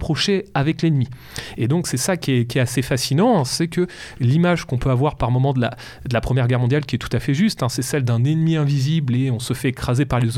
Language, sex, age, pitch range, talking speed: French, male, 30-49, 125-160 Hz, 270 wpm